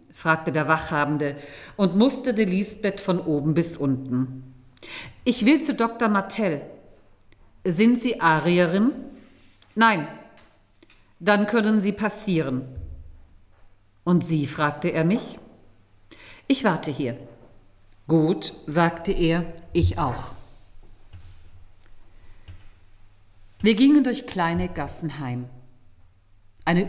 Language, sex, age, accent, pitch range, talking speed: German, female, 50-69, German, 125-195 Hz, 95 wpm